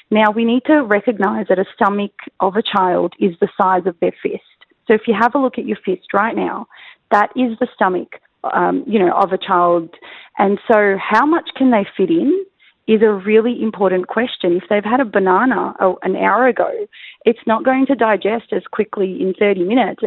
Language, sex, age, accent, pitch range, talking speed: English, female, 30-49, Australian, 195-260 Hz, 205 wpm